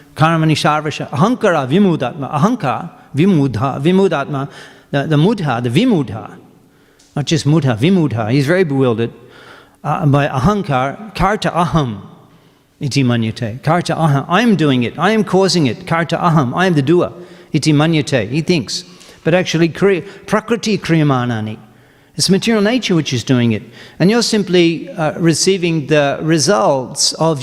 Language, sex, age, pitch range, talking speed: English, male, 50-69, 145-185 Hz, 145 wpm